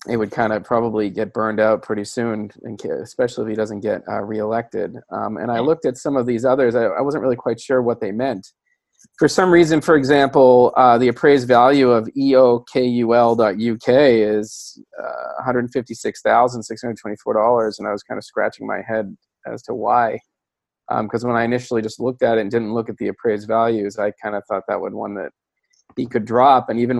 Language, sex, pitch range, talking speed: English, male, 115-135 Hz, 195 wpm